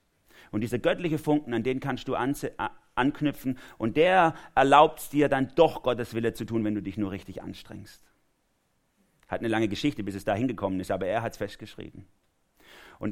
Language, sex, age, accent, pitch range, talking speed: German, male, 40-59, German, 100-125 Hz, 190 wpm